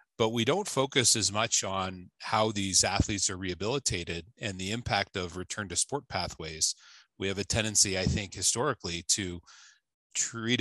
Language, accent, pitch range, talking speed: English, American, 95-115 Hz, 165 wpm